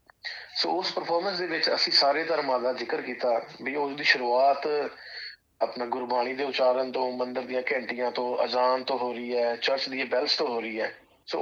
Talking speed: 190 wpm